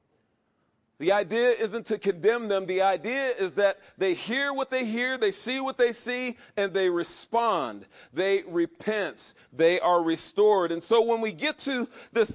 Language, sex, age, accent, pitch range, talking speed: English, male, 40-59, American, 200-265 Hz, 170 wpm